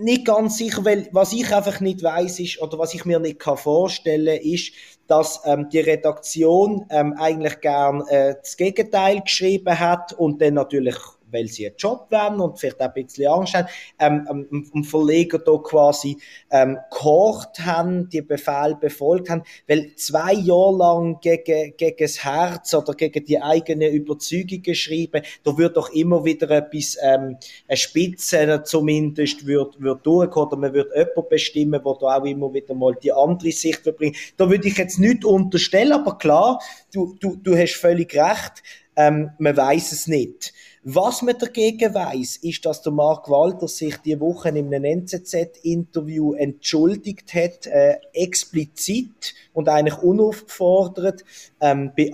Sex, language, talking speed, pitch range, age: male, German, 165 wpm, 150-180 Hz, 30-49